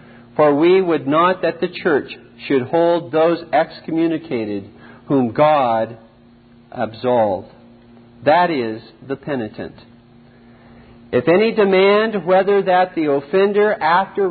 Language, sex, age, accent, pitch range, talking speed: English, male, 50-69, American, 120-180 Hz, 110 wpm